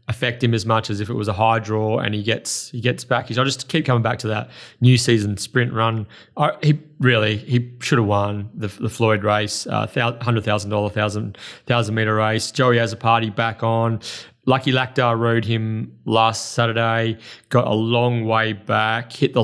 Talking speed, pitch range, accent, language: 200 wpm, 110-125 Hz, Australian, English